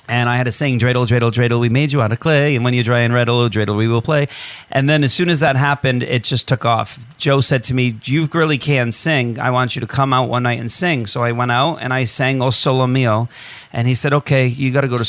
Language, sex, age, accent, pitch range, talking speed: English, male, 40-59, American, 120-135 Hz, 285 wpm